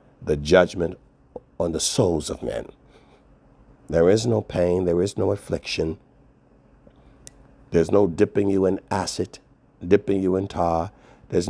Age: 60-79